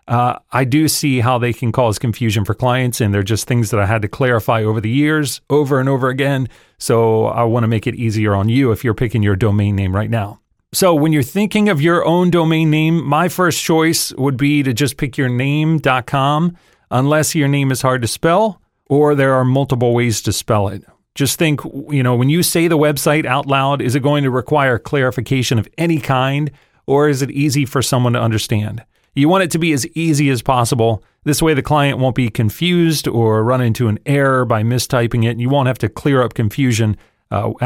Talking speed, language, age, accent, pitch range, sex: 220 wpm, English, 40-59, American, 115-145 Hz, male